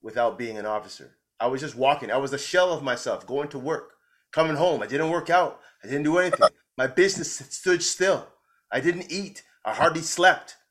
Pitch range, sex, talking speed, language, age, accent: 135-185 Hz, male, 205 wpm, English, 30-49, American